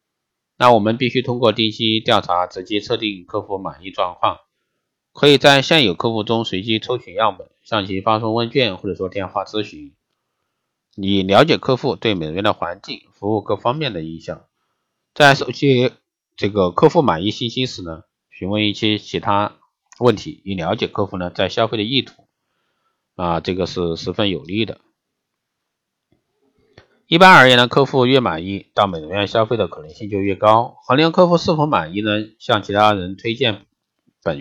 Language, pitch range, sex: Chinese, 95-125 Hz, male